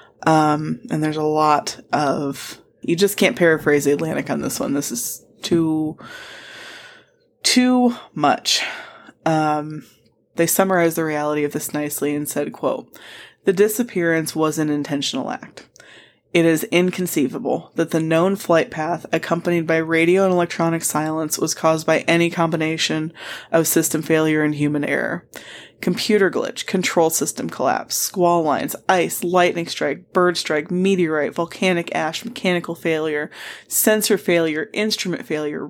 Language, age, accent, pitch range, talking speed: English, 20-39, American, 155-190 Hz, 140 wpm